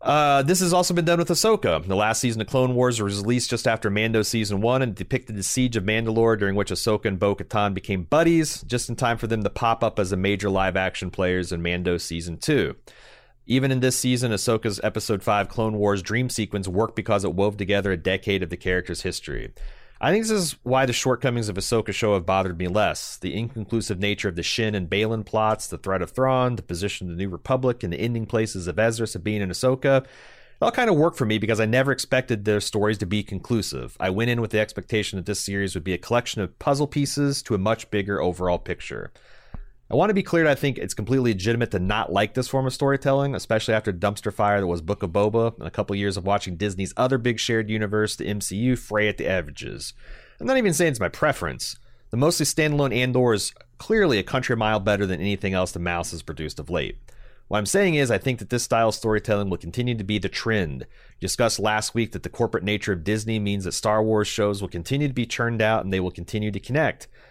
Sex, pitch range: male, 100-125 Hz